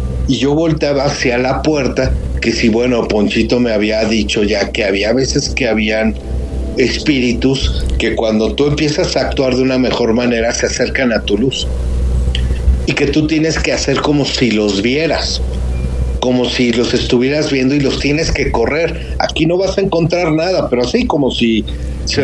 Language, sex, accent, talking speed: Spanish, male, Mexican, 180 wpm